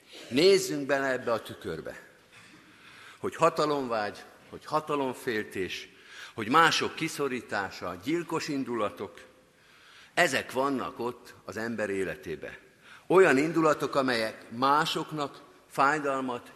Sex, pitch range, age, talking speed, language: male, 115-155 Hz, 50-69, 90 wpm, Hungarian